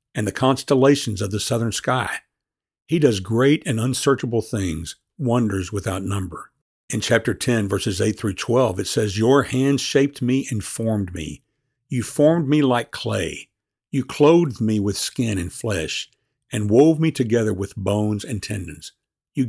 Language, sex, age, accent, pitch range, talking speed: English, male, 60-79, American, 105-130 Hz, 165 wpm